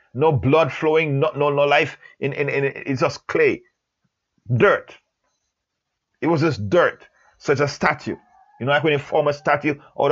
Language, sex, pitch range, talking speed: English, male, 140-220 Hz, 185 wpm